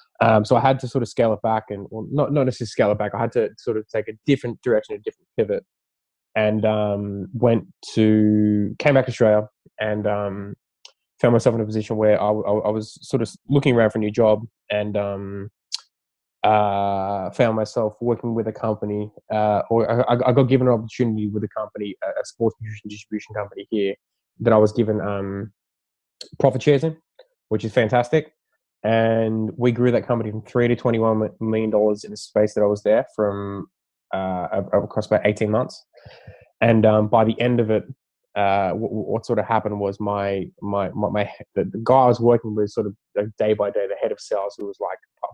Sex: male